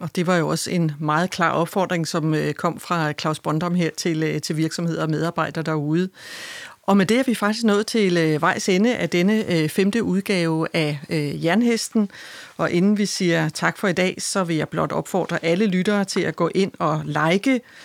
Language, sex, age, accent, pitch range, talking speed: Danish, female, 40-59, native, 160-200 Hz, 195 wpm